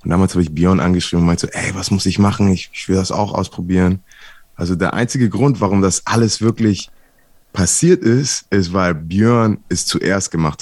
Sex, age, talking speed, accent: male, 20-39, 205 wpm, German